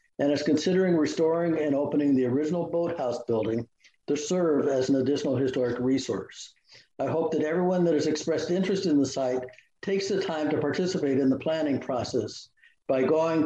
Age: 60-79